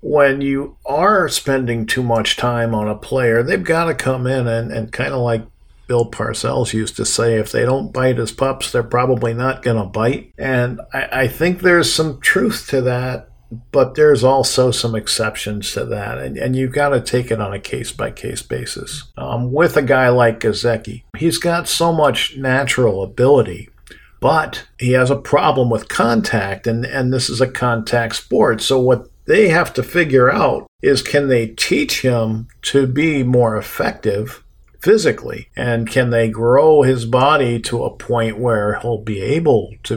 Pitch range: 115-135 Hz